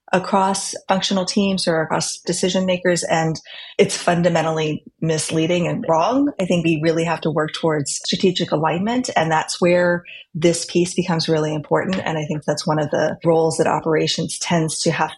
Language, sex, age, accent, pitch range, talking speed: English, female, 20-39, American, 160-185 Hz, 175 wpm